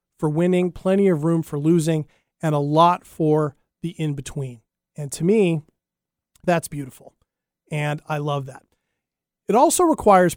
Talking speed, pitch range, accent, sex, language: 150 wpm, 145-180 Hz, American, male, English